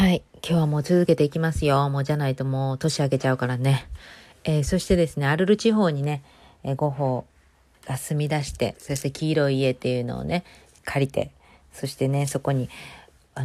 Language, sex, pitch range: Japanese, female, 130-160 Hz